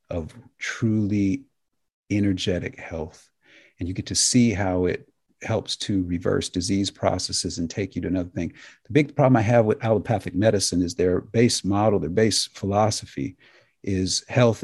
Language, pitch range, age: English, 90-110 Hz, 50-69